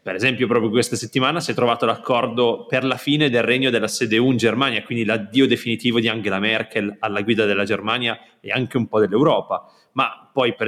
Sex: male